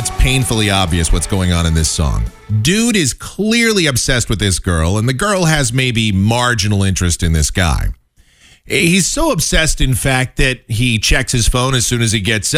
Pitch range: 95-135 Hz